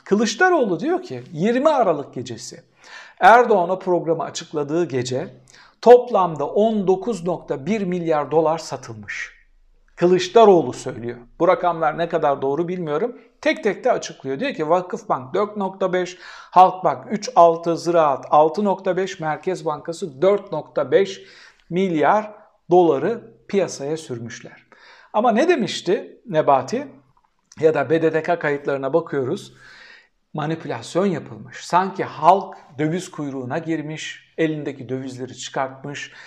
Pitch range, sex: 150-195 Hz, male